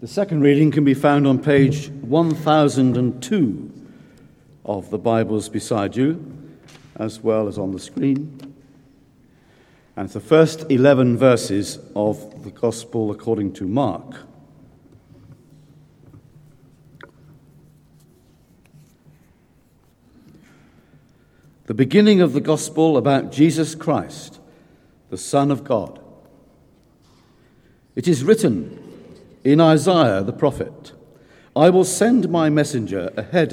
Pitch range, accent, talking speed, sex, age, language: 125-155 Hz, British, 100 wpm, male, 60-79, English